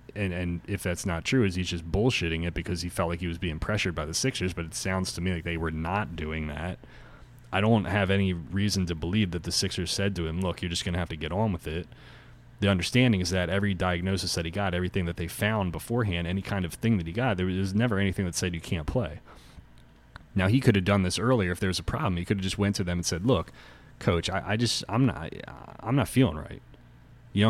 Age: 30-49